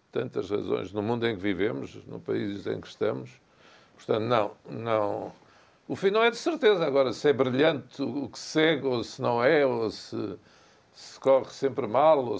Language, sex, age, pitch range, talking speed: Portuguese, male, 60-79, 115-140 Hz, 190 wpm